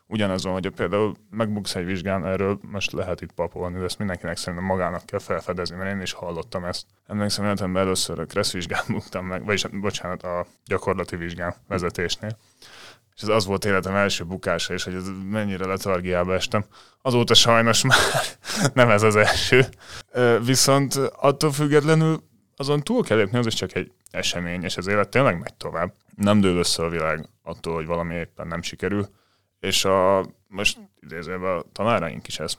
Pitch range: 90-110 Hz